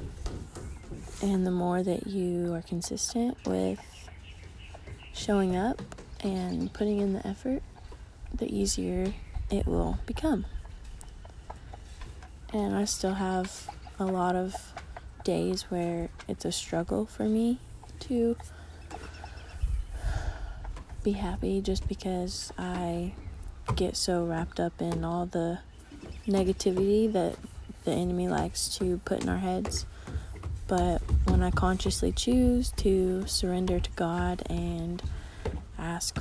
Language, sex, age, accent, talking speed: English, female, 20-39, American, 115 wpm